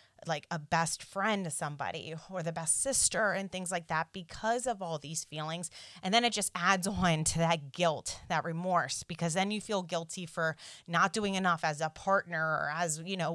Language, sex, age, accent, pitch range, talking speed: English, female, 30-49, American, 165-195 Hz, 205 wpm